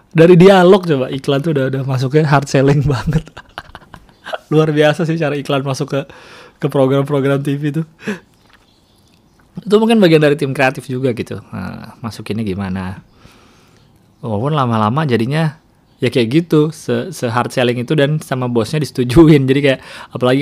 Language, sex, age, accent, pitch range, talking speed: Indonesian, male, 20-39, native, 105-140 Hz, 145 wpm